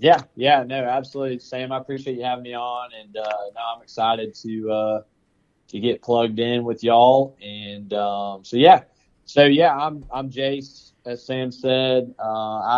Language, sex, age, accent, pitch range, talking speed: English, male, 20-39, American, 105-125 Hz, 175 wpm